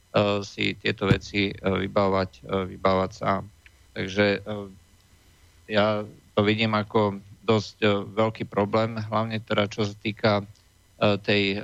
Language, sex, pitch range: Slovak, male, 95-110 Hz